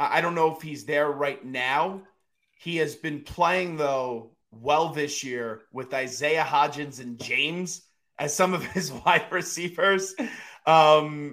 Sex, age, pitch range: male, 30-49, 145-180 Hz